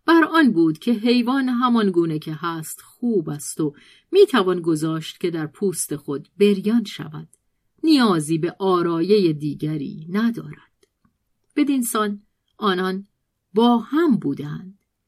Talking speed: 125 wpm